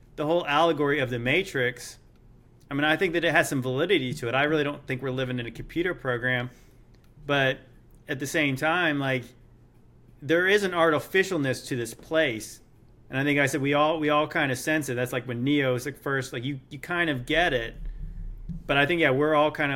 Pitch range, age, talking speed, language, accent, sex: 125-160 Hz, 30-49, 220 wpm, English, American, male